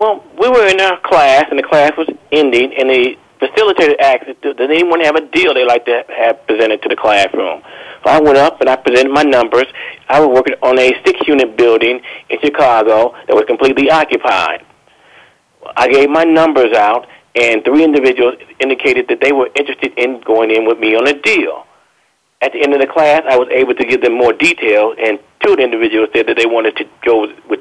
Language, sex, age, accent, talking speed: English, male, 40-59, American, 215 wpm